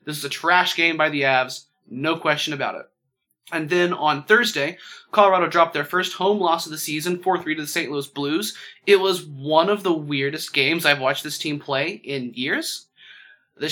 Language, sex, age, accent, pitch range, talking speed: English, male, 20-39, American, 145-195 Hz, 200 wpm